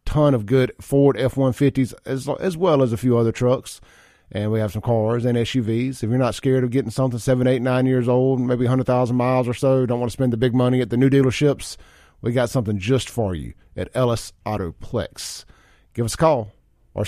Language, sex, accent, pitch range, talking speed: English, male, American, 110-135 Hz, 220 wpm